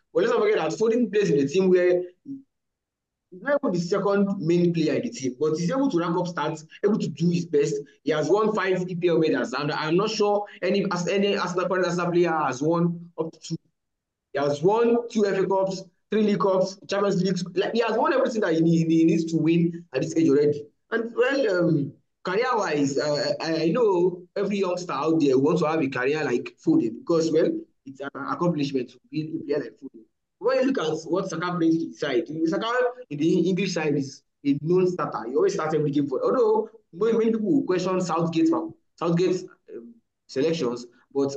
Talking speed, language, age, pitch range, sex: 195 wpm, English, 20-39, 155-200 Hz, male